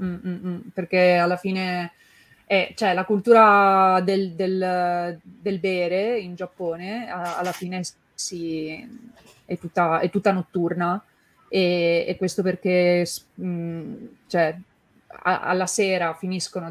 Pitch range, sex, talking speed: 175-200 Hz, female, 95 wpm